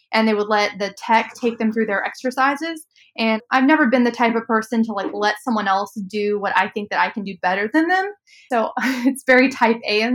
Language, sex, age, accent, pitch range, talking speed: English, female, 20-39, American, 205-235 Hz, 240 wpm